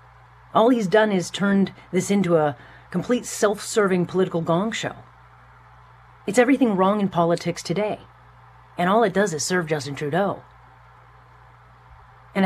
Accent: American